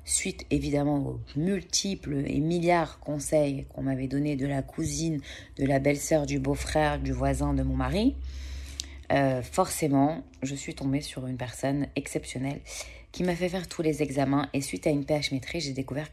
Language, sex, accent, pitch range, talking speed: French, female, French, 130-155 Hz, 175 wpm